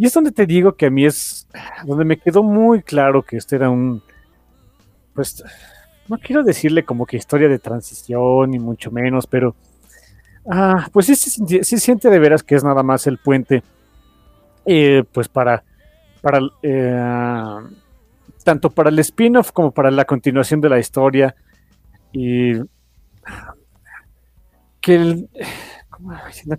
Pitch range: 115-175 Hz